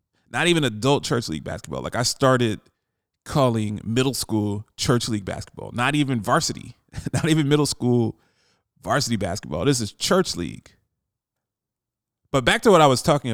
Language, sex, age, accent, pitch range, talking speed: English, male, 30-49, American, 105-135 Hz, 155 wpm